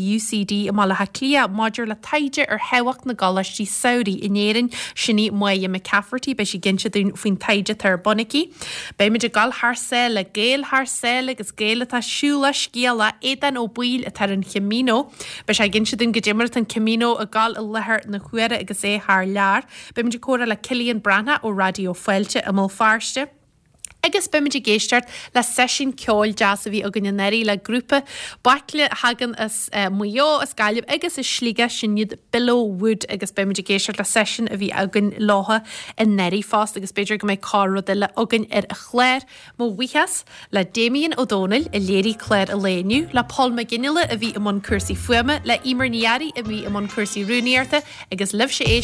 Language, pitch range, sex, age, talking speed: English, 205-250 Hz, female, 20-39, 145 wpm